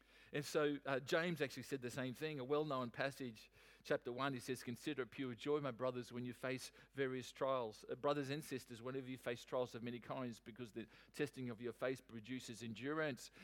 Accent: Australian